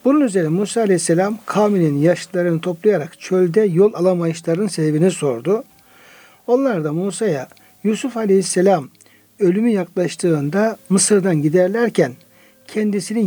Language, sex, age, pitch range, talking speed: Turkish, male, 60-79, 165-215 Hz, 100 wpm